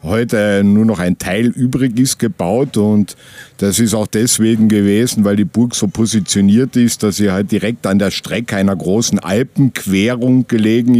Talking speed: 170 wpm